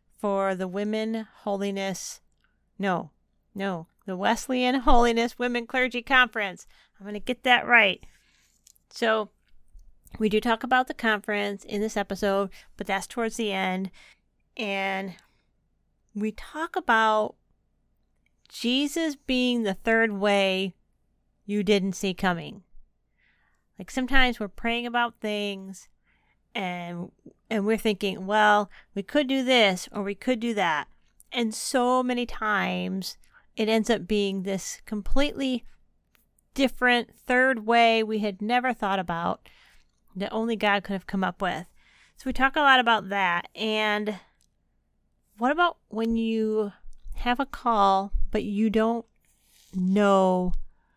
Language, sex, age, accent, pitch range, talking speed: English, female, 40-59, American, 195-240 Hz, 130 wpm